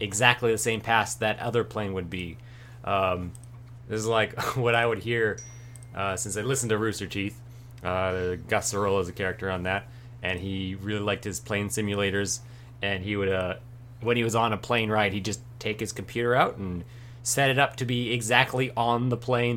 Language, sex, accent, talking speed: English, male, American, 200 wpm